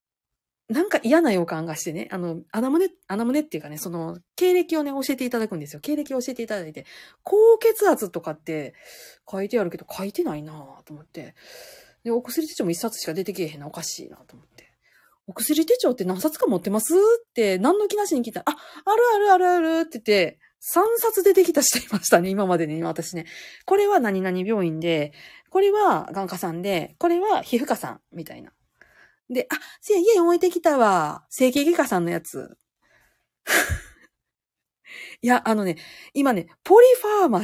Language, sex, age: Japanese, female, 30-49